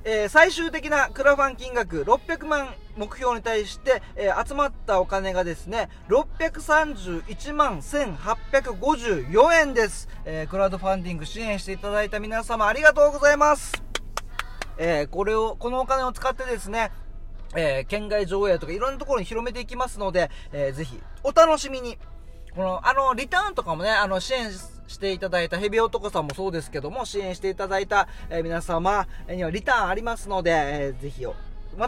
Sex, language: male, Japanese